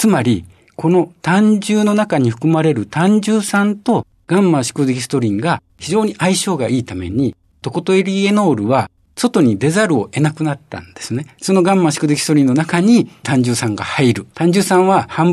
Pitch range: 125-195 Hz